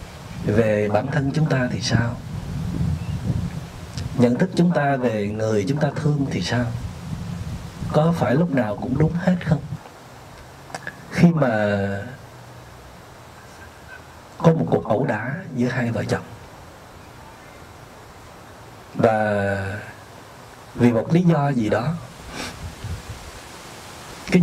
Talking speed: 110 wpm